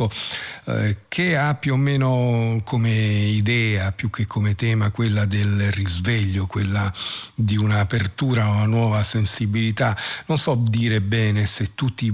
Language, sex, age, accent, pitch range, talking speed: Italian, male, 50-69, native, 105-120 Hz, 140 wpm